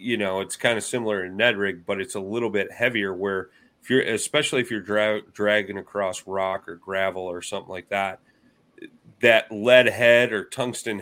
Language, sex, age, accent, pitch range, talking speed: English, male, 30-49, American, 95-115 Hz, 190 wpm